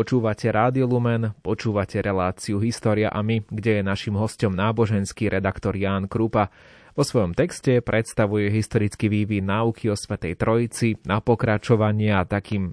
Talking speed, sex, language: 135 wpm, male, Slovak